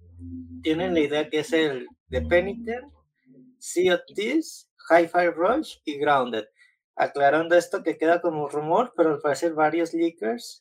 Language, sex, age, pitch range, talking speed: Spanish, male, 20-39, 140-170 Hz, 145 wpm